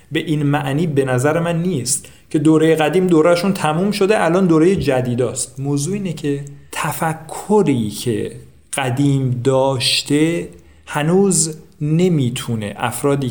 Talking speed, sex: 115 wpm, male